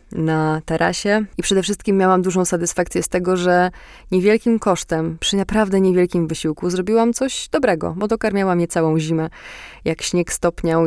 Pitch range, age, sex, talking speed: 160-190 Hz, 20-39, female, 155 wpm